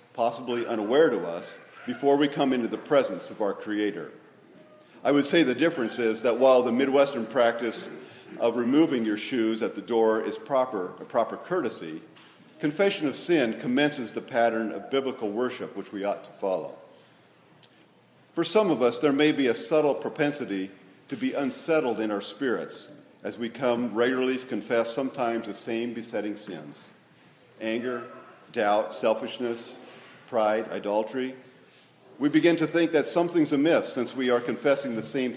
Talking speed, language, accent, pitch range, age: 160 wpm, English, American, 110-140 Hz, 50-69